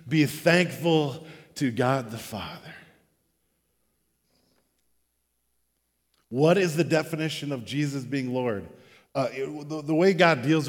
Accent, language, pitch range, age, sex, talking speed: American, English, 130-160 Hz, 50-69, male, 120 wpm